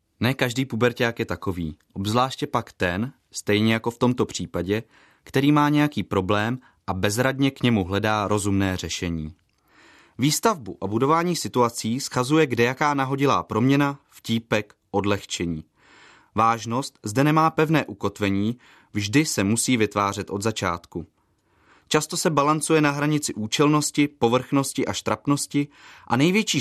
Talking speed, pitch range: 130 wpm, 100-140 Hz